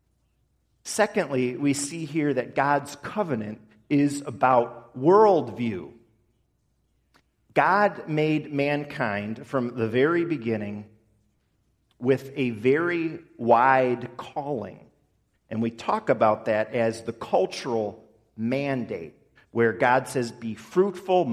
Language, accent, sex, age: English, American, male, 40-59